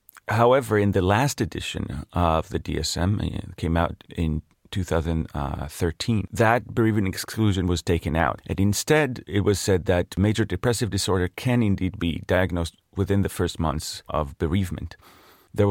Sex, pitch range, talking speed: male, 85-110 Hz, 150 wpm